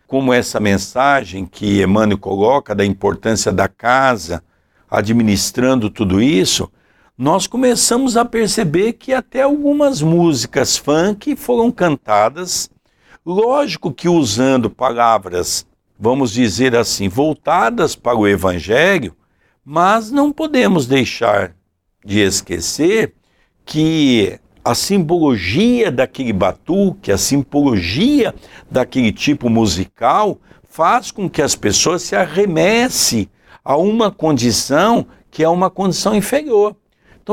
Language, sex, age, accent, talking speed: Portuguese, male, 60-79, Brazilian, 110 wpm